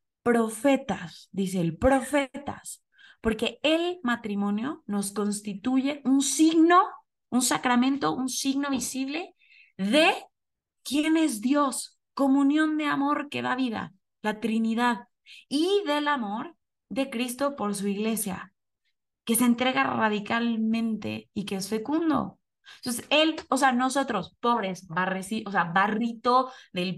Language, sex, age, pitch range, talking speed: Spanish, female, 20-39, 200-275 Hz, 120 wpm